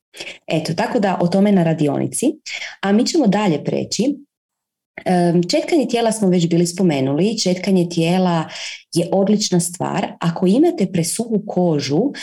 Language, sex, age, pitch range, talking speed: Croatian, female, 30-49, 160-205 Hz, 130 wpm